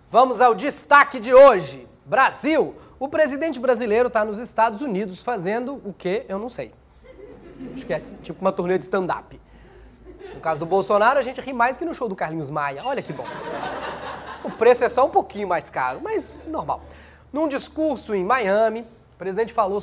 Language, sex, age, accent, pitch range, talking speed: Portuguese, male, 20-39, Brazilian, 185-275 Hz, 185 wpm